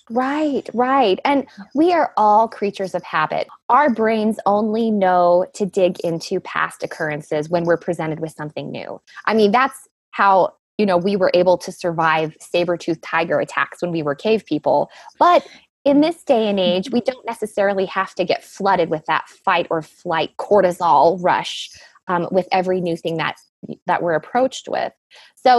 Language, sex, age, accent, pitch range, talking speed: English, female, 20-39, American, 165-220 Hz, 170 wpm